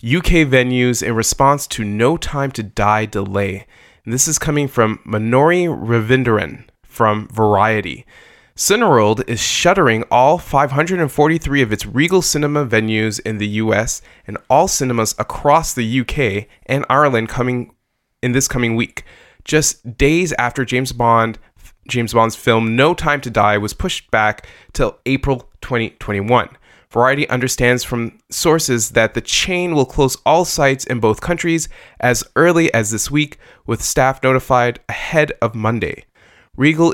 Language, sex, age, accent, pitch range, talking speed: English, male, 20-39, American, 110-140 Hz, 145 wpm